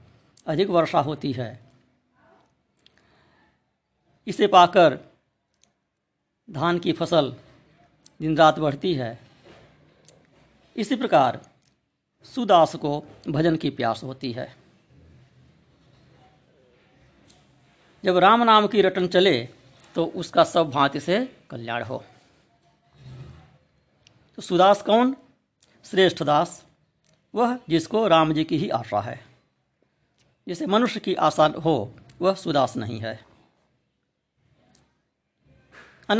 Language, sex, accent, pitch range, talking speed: Hindi, female, native, 125-180 Hz, 95 wpm